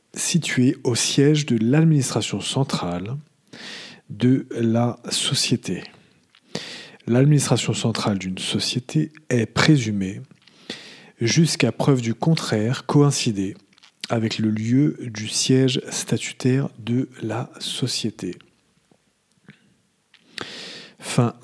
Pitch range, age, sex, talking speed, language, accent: 110-145 Hz, 40-59, male, 85 wpm, English, French